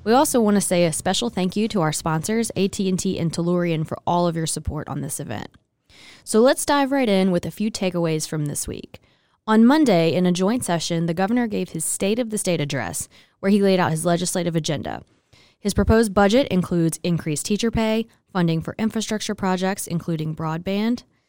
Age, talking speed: 20-39, 195 wpm